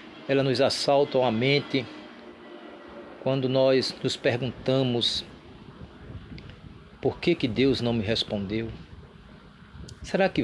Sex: male